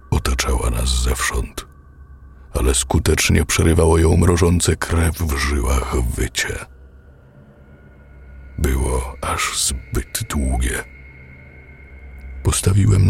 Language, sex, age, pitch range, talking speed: Polish, male, 50-69, 65-85 Hz, 80 wpm